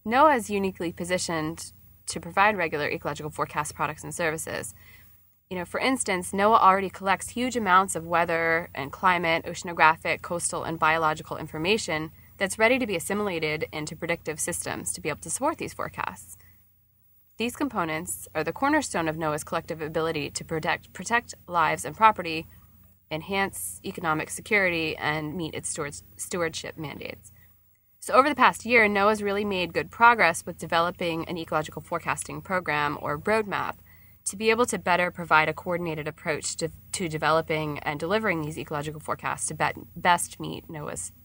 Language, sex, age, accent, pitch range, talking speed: English, female, 20-39, American, 155-185 Hz, 155 wpm